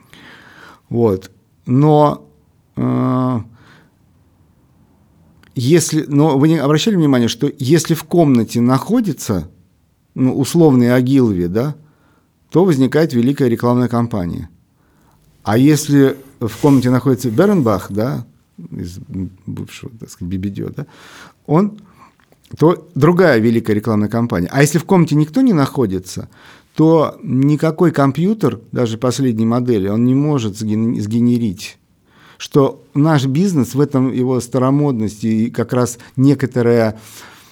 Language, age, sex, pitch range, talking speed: Russian, 50-69, male, 110-145 Hz, 110 wpm